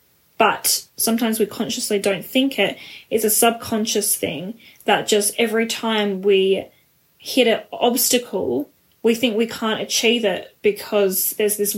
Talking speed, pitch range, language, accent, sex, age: 150 wpm, 195-225 Hz, English, Australian, female, 10-29